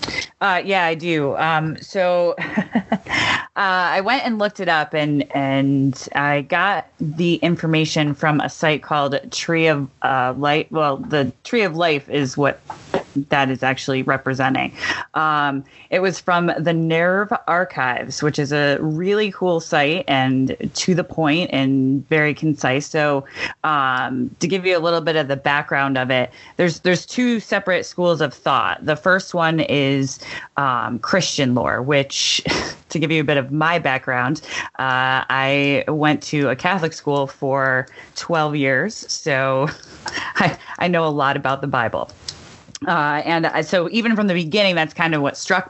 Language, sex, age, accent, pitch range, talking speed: English, female, 30-49, American, 135-165 Hz, 165 wpm